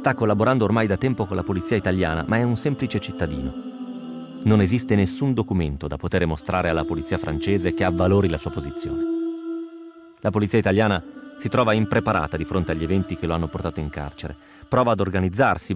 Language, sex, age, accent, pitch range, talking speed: Italian, male, 30-49, native, 85-115 Hz, 185 wpm